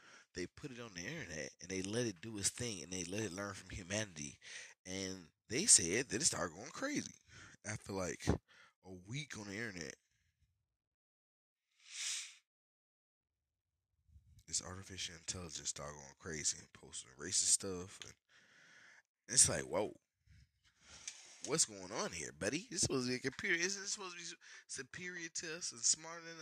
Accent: American